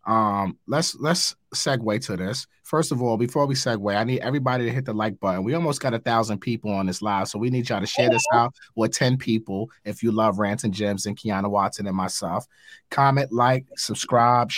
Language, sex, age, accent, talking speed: English, male, 30-49, American, 220 wpm